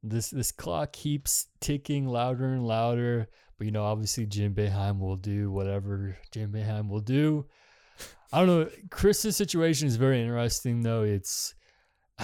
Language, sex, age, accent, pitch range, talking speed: English, male, 20-39, American, 105-125 Hz, 155 wpm